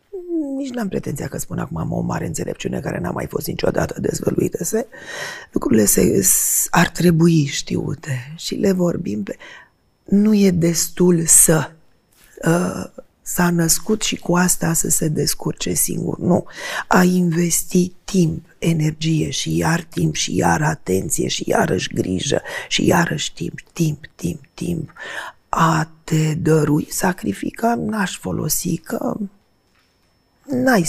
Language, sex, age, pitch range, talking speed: Romanian, female, 30-49, 160-205 Hz, 130 wpm